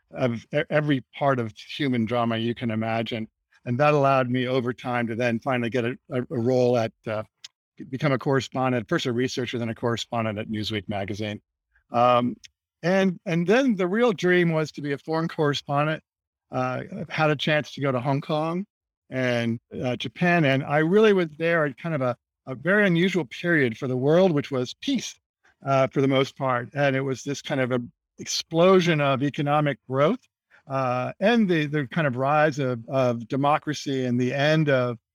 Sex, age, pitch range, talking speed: male, 50-69, 120-155 Hz, 190 wpm